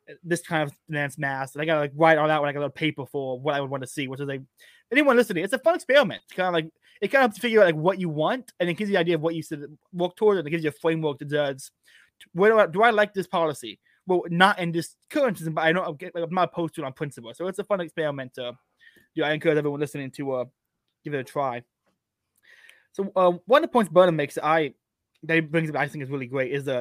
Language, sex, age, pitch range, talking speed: English, male, 20-39, 140-180 Hz, 290 wpm